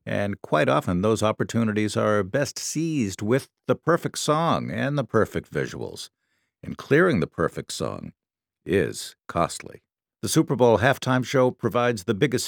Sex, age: male, 60-79